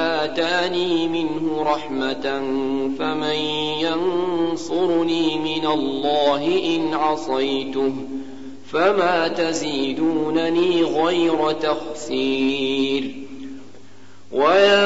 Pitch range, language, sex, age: 140-180 Hz, Arabic, male, 50-69